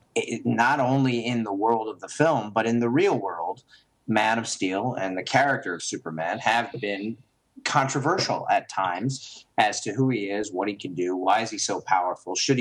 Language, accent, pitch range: English, American, 90-120 Hz